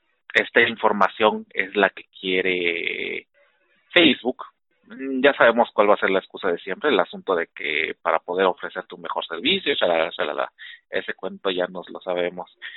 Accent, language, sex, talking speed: Mexican, Spanish, male, 155 wpm